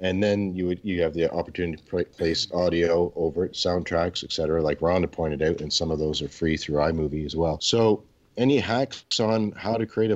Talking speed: 220 wpm